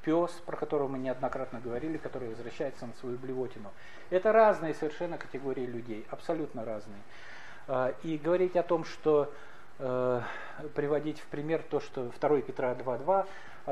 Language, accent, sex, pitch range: Russian, native, male, 130-170 Hz